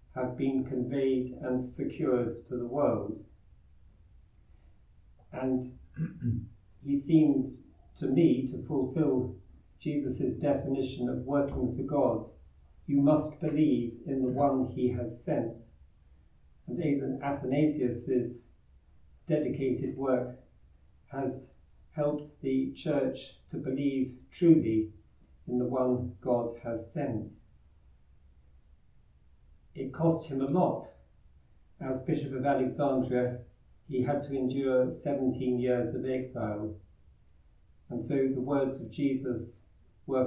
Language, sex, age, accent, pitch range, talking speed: English, male, 50-69, British, 95-135 Hz, 105 wpm